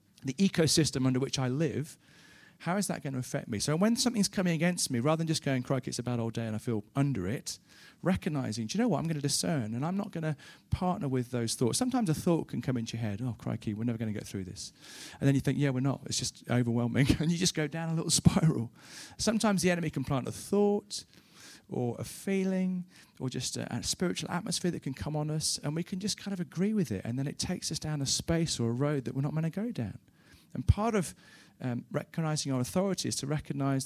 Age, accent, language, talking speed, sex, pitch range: 40-59, British, English, 255 wpm, male, 125-165 Hz